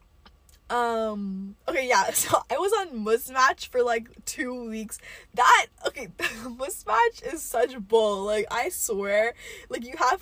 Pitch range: 220-265 Hz